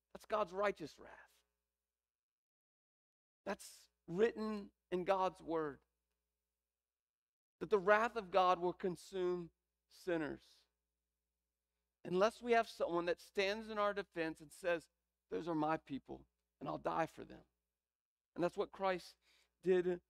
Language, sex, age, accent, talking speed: English, male, 40-59, American, 125 wpm